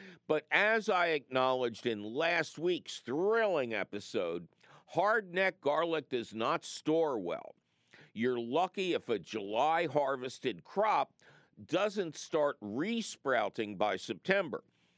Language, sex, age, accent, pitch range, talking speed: English, male, 50-69, American, 120-175 Hz, 110 wpm